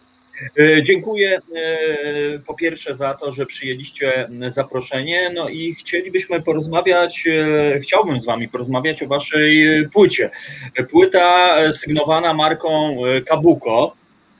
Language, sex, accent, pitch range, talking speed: Polish, male, native, 140-175 Hz, 95 wpm